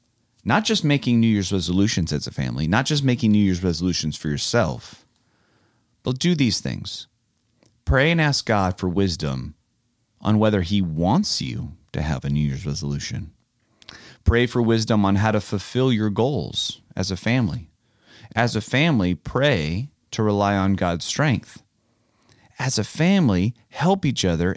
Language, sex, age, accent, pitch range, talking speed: English, male, 30-49, American, 80-115 Hz, 160 wpm